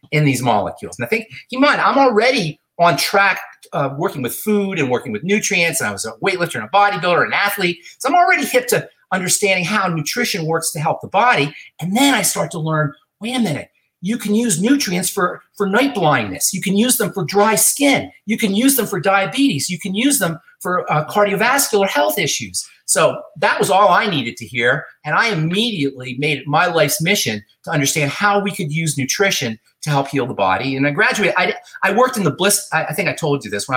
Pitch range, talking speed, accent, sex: 140-205 Hz, 225 wpm, American, male